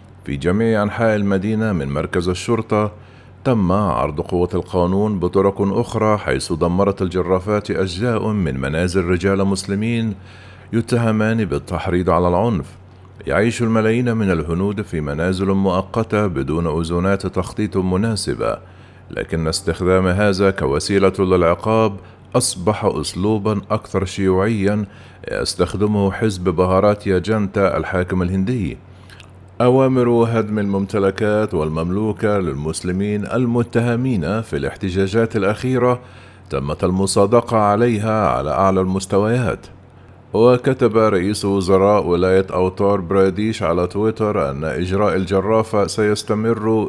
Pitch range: 95-110 Hz